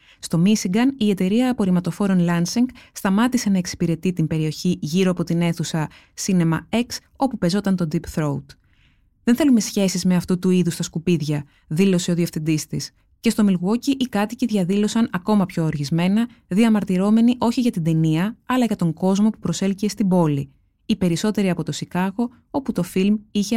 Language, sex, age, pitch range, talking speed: Greek, female, 20-39, 175-225 Hz, 170 wpm